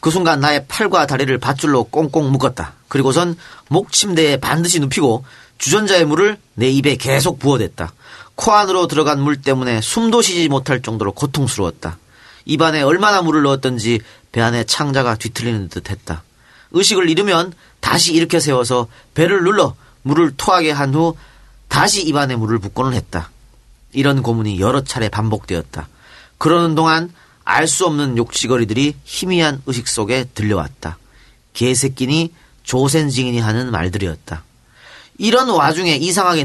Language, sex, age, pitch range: Korean, male, 40-59, 120-170 Hz